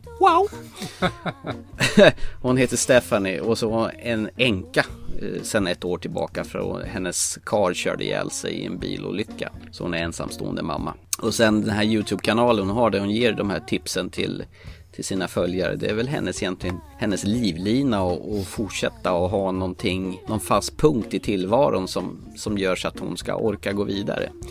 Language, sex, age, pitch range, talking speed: Swedish, male, 30-49, 90-120 Hz, 175 wpm